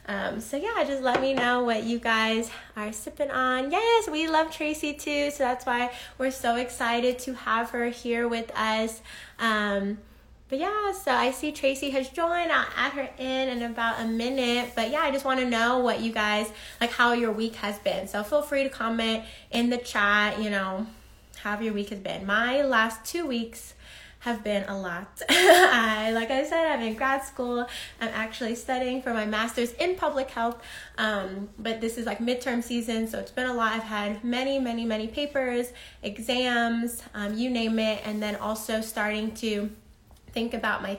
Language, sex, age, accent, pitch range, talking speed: English, female, 20-39, American, 220-265 Hz, 195 wpm